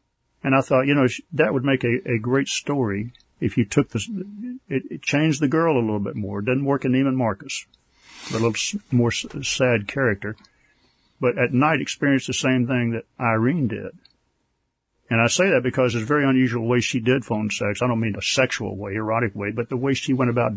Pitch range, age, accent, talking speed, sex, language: 115-130 Hz, 50-69, American, 220 wpm, male, English